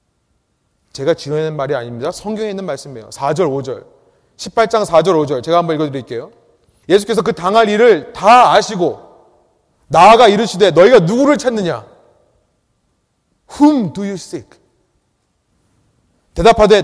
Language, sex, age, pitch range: Korean, male, 30-49, 140-230 Hz